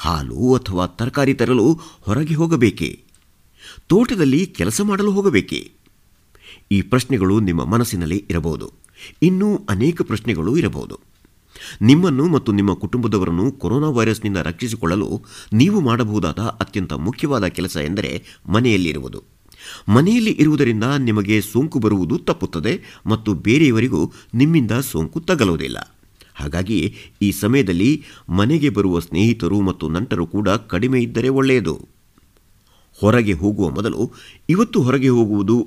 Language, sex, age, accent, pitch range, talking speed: Kannada, male, 50-69, native, 95-135 Hz, 105 wpm